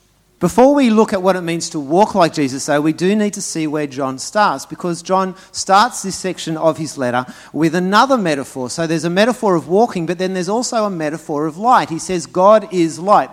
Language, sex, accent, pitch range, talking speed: English, male, Australian, 145-185 Hz, 225 wpm